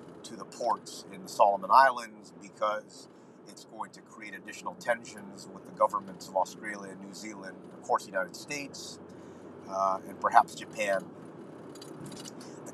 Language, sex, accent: English, male, American